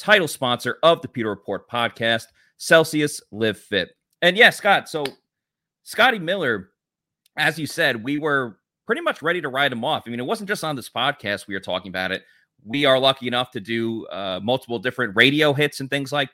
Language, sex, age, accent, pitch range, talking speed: English, male, 30-49, American, 110-165 Hz, 200 wpm